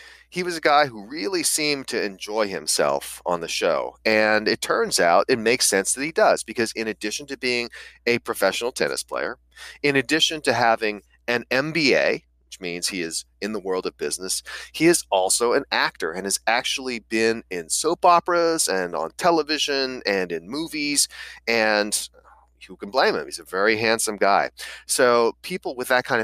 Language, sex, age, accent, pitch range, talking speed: English, male, 30-49, American, 105-160 Hz, 185 wpm